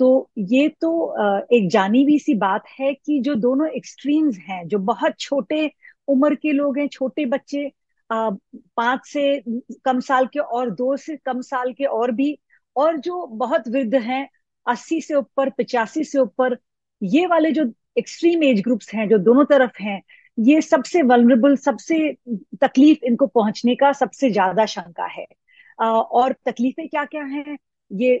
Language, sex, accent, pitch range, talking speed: Hindi, female, native, 235-280 Hz, 160 wpm